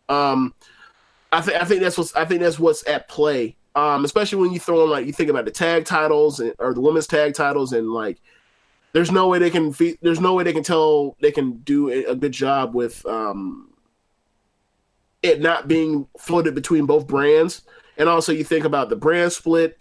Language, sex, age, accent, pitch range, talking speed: English, male, 20-39, American, 145-170 Hz, 210 wpm